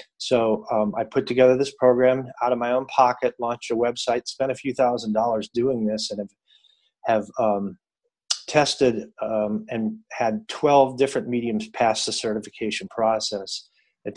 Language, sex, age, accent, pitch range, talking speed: English, male, 30-49, American, 105-125 Hz, 160 wpm